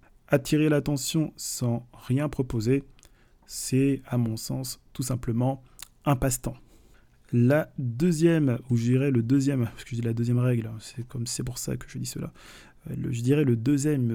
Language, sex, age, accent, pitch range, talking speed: French, male, 20-39, French, 120-140 Hz, 175 wpm